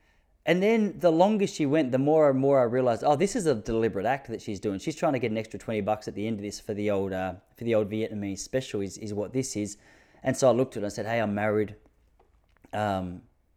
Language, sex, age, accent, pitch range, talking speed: English, male, 20-39, Australian, 105-130 Hz, 270 wpm